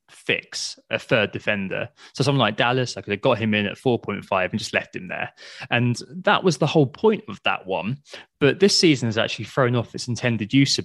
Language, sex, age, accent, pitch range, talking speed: English, male, 20-39, British, 115-160 Hz, 225 wpm